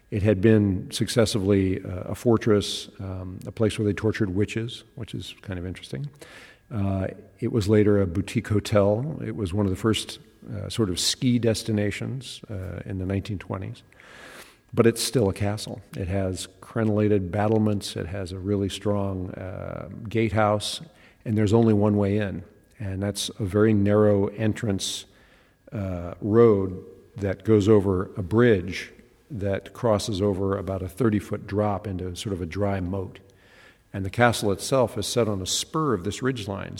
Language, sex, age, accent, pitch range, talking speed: English, male, 50-69, American, 95-110 Hz, 165 wpm